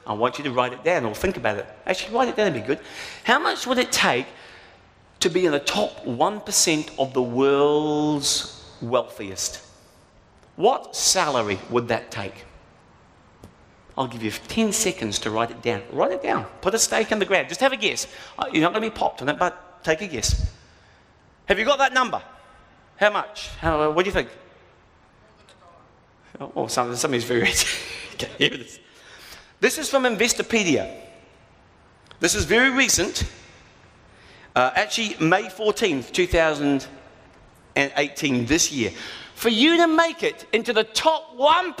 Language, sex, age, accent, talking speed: English, male, 40-59, British, 160 wpm